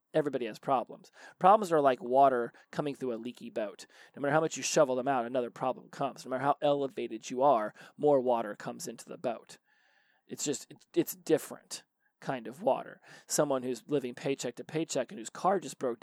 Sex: male